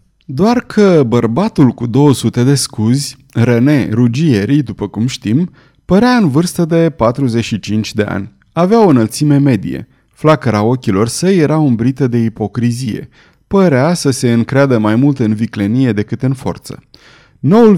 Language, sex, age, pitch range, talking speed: Romanian, male, 30-49, 110-150 Hz, 140 wpm